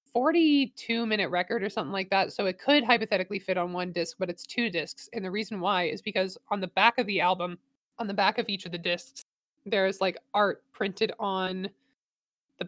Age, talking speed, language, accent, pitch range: 20-39, 215 wpm, English, American, 175-205 Hz